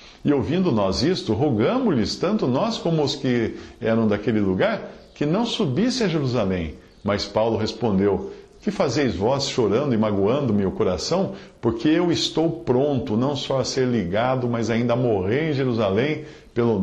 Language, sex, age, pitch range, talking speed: English, male, 50-69, 105-135 Hz, 165 wpm